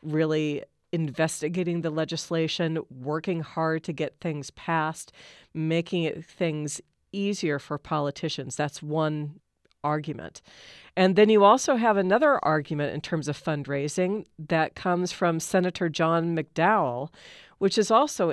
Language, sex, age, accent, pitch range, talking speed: English, female, 40-59, American, 150-185 Hz, 125 wpm